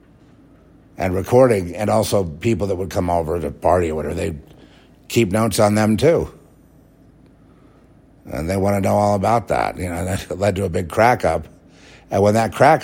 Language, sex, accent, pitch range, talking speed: English, male, American, 85-110 Hz, 185 wpm